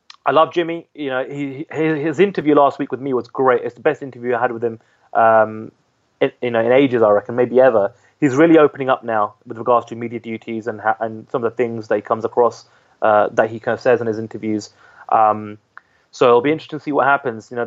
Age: 30-49